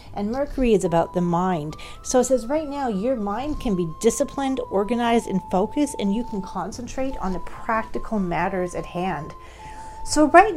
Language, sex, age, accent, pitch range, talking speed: English, female, 40-59, American, 185-245 Hz, 175 wpm